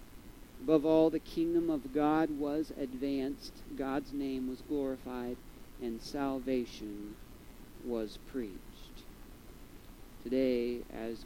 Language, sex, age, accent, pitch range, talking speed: English, male, 40-59, American, 130-195 Hz, 95 wpm